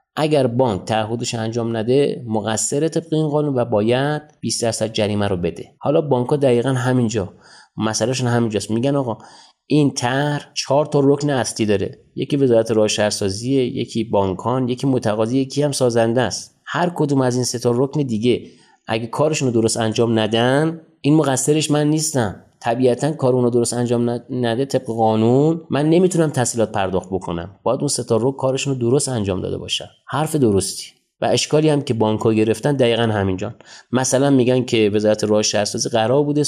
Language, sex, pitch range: Persian, male, 115-145 Hz